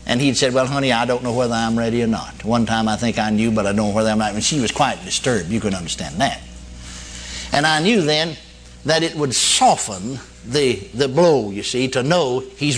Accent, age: American, 60-79